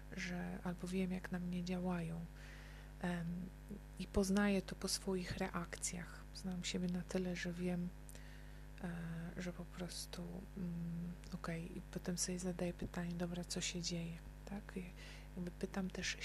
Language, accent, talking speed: Polish, native, 150 wpm